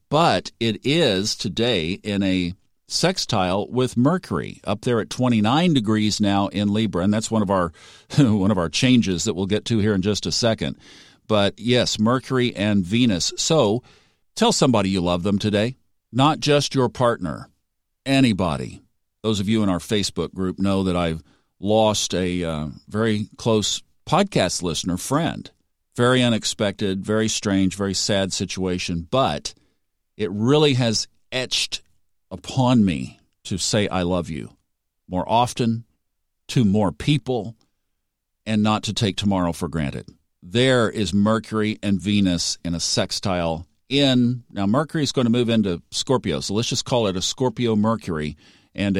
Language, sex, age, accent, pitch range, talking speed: English, male, 50-69, American, 90-120 Hz, 155 wpm